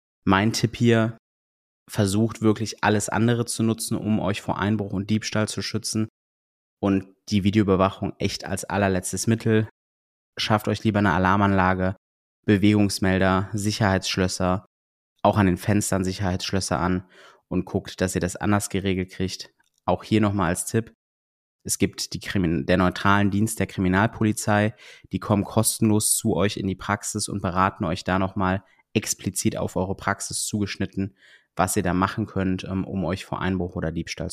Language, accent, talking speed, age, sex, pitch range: German, German, 155 wpm, 20-39, male, 95-110 Hz